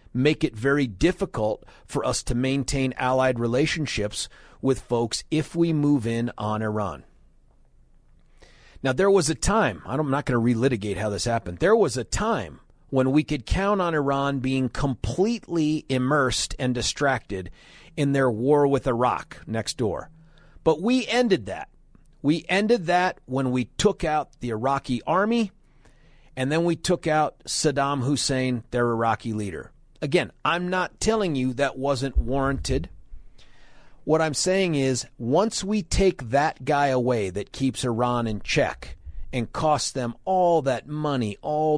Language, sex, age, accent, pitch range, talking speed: English, male, 40-59, American, 120-155 Hz, 155 wpm